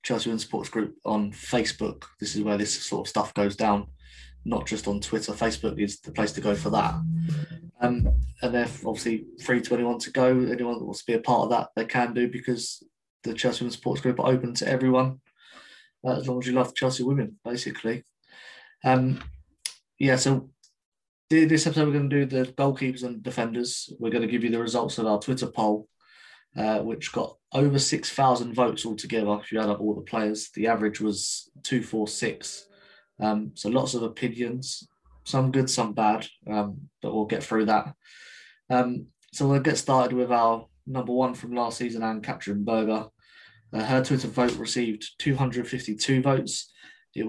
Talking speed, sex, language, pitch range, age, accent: 185 wpm, male, English, 110-130 Hz, 20-39, British